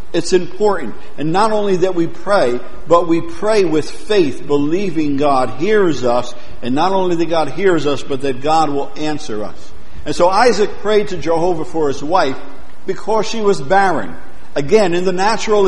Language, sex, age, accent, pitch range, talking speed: English, male, 50-69, American, 150-190 Hz, 180 wpm